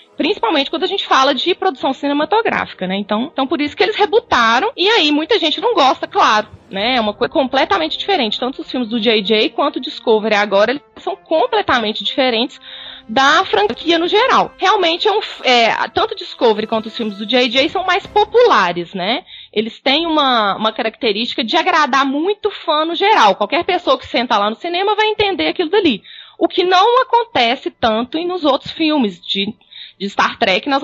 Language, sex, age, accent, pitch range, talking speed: Portuguese, female, 20-39, Brazilian, 230-360 Hz, 190 wpm